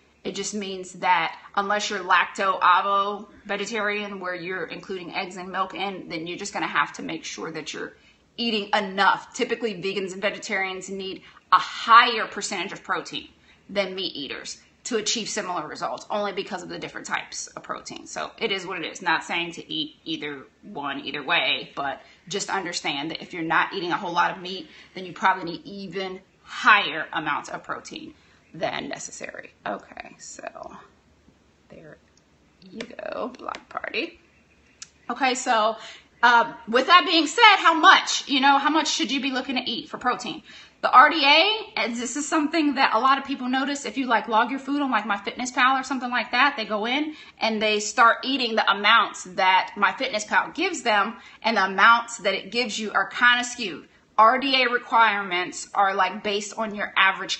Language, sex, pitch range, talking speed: English, female, 195-250 Hz, 185 wpm